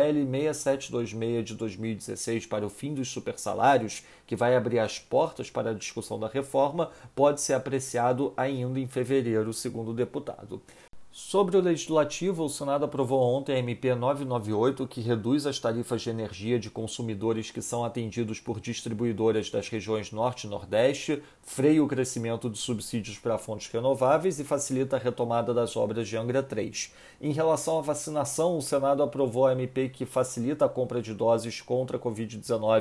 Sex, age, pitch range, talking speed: male, 40-59, 115-140 Hz, 165 wpm